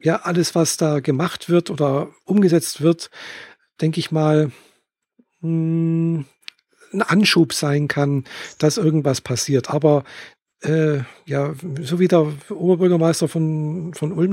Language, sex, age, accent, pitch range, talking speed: German, male, 50-69, German, 150-175 Hz, 120 wpm